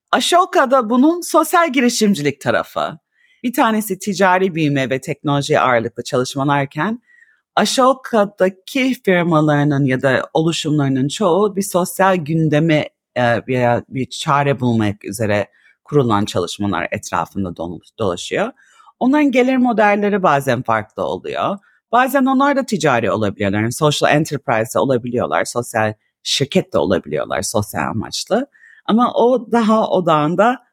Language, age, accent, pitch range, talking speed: Turkish, 40-59, native, 135-230 Hz, 110 wpm